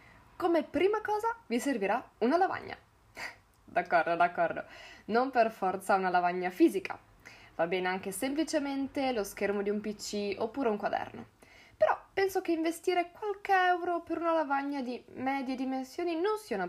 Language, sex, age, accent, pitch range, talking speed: Italian, female, 10-29, native, 200-290 Hz, 150 wpm